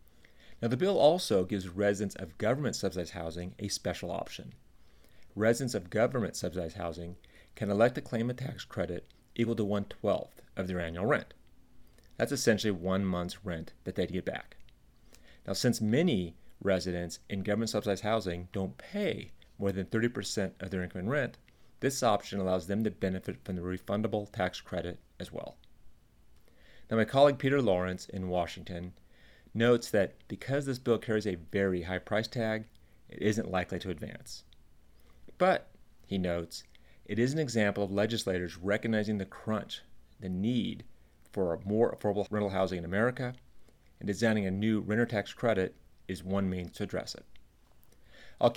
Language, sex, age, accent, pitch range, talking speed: English, male, 30-49, American, 90-110 Hz, 165 wpm